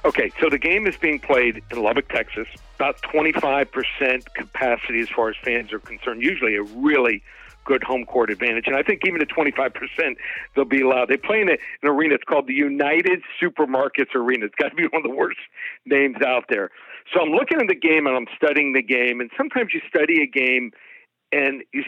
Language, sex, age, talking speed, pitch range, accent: English, male, 60-79, 210 wpm, 125-150 Hz, American